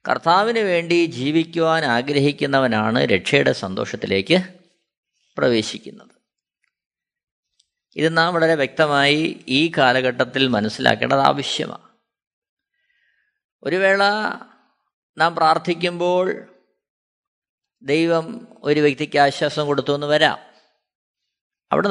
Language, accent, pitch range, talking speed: Malayalam, native, 140-195 Hz, 75 wpm